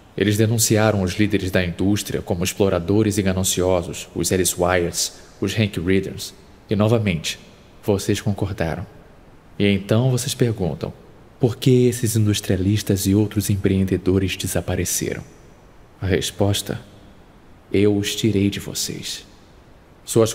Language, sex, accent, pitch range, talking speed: Portuguese, male, Brazilian, 95-110 Hz, 120 wpm